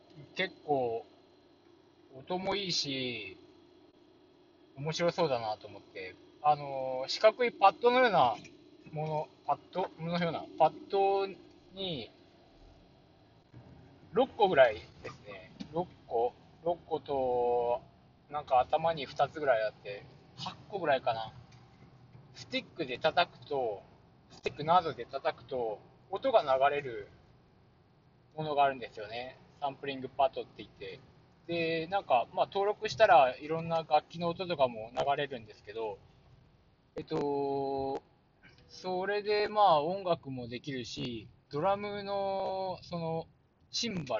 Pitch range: 135-195 Hz